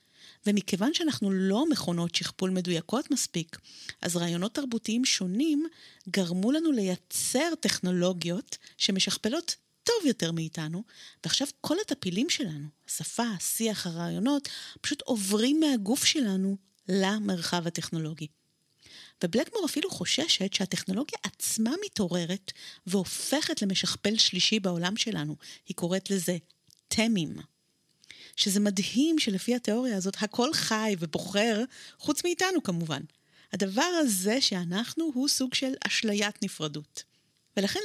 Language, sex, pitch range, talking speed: Hebrew, female, 175-250 Hz, 105 wpm